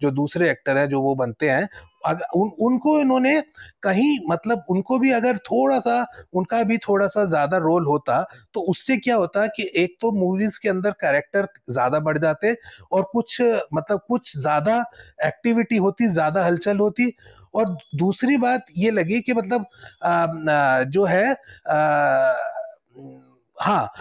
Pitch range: 175-230 Hz